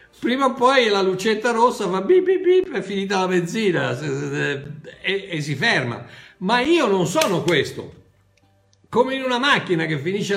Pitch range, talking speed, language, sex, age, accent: 130-215 Hz, 175 wpm, Italian, male, 60-79, native